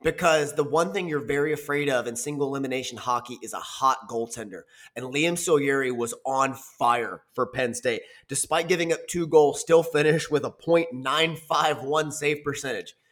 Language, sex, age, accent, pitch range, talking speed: English, male, 20-39, American, 130-160 Hz, 170 wpm